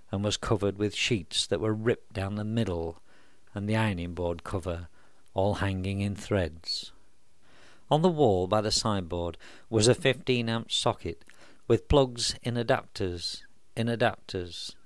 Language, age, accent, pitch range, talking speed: English, 50-69, British, 95-120 Hz, 145 wpm